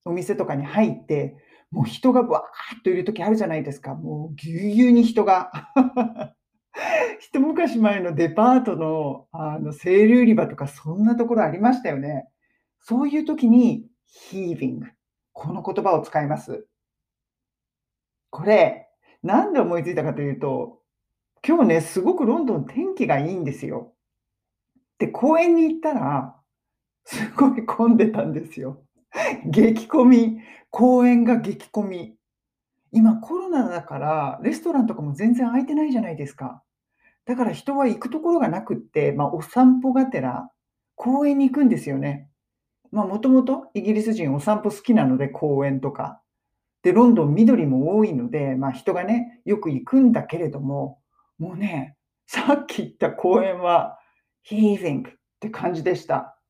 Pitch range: 155-245 Hz